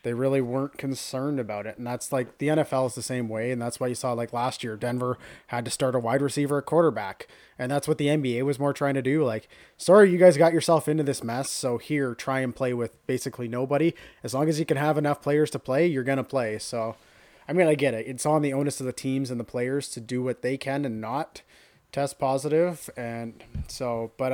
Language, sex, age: English, male, 20-39